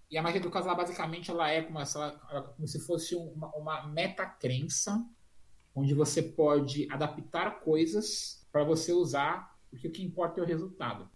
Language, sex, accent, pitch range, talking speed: Portuguese, male, Brazilian, 130-165 Hz, 160 wpm